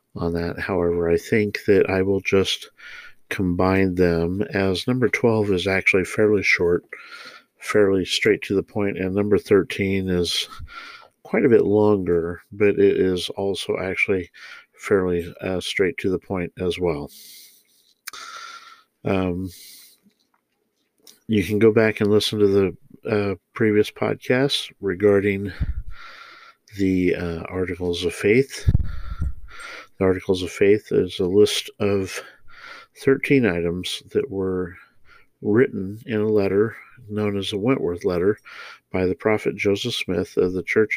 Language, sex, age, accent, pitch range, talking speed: English, male, 50-69, American, 90-110 Hz, 135 wpm